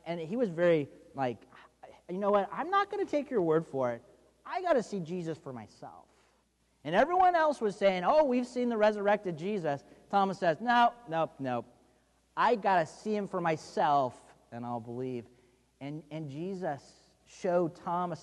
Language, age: English, 30-49